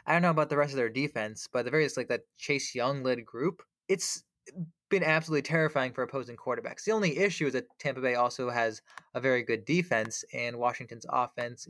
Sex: male